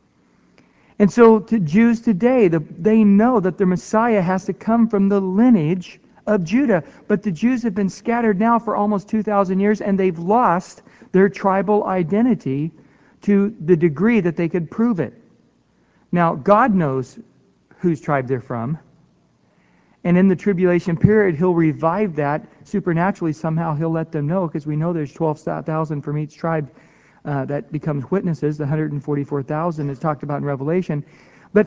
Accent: American